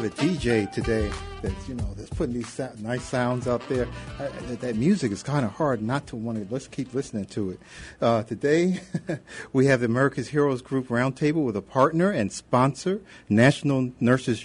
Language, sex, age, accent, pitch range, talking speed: English, male, 50-69, American, 110-140 Hz, 170 wpm